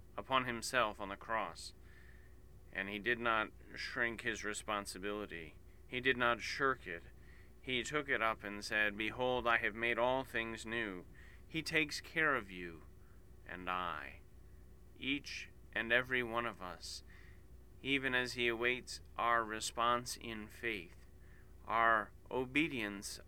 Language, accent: English, American